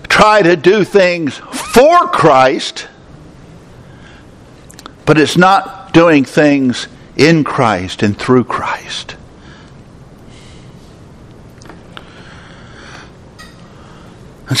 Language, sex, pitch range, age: English, male, 140-190 Hz, 60-79